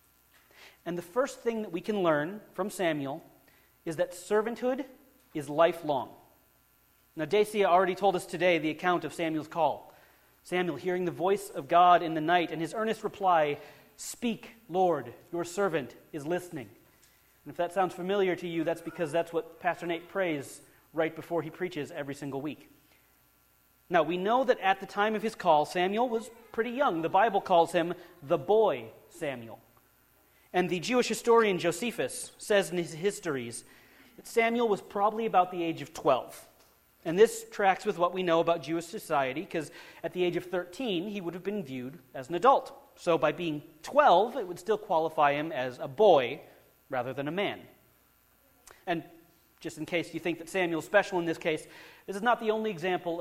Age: 30-49